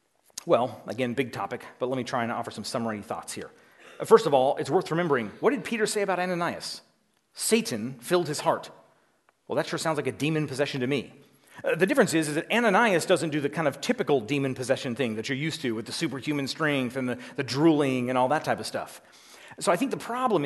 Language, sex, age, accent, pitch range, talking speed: English, male, 30-49, American, 125-165 Hz, 230 wpm